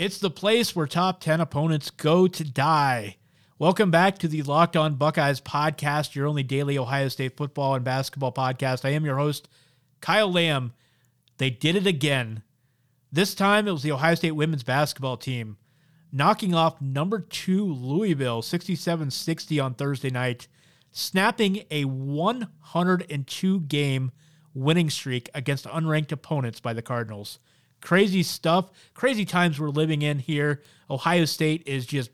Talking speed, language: 150 wpm, English